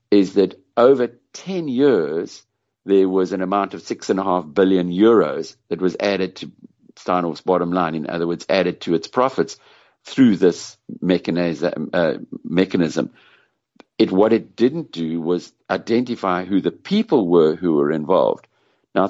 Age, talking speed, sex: 60-79, 155 wpm, male